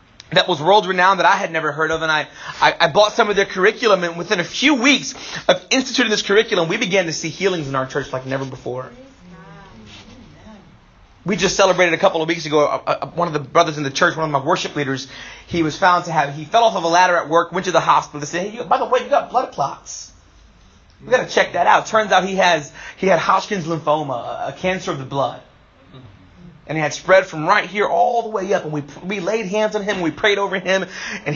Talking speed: 255 wpm